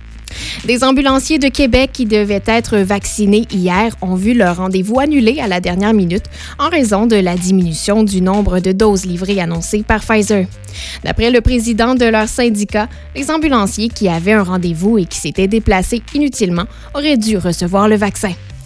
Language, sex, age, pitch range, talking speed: French, female, 20-39, 190-235 Hz, 170 wpm